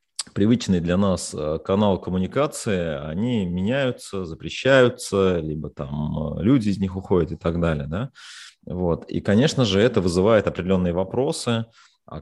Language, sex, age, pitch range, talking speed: Russian, male, 30-49, 80-105 Hz, 135 wpm